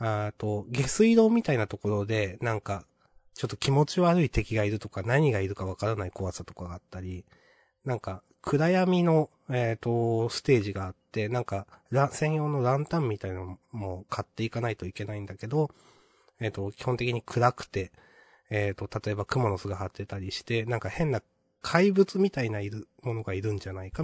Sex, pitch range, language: male, 95-125 Hz, Japanese